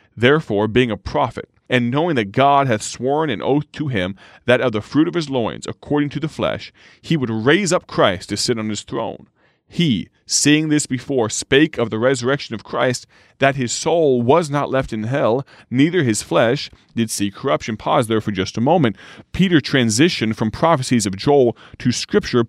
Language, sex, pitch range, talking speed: English, male, 110-145 Hz, 195 wpm